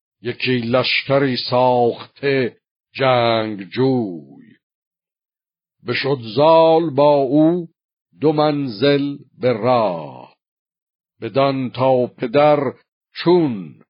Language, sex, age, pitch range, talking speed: Persian, male, 60-79, 120-140 Hz, 75 wpm